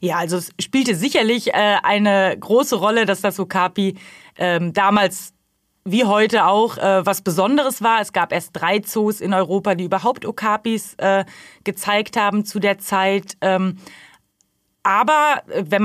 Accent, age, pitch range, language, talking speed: German, 20-39, 195-230 Hz, German, 135 wpm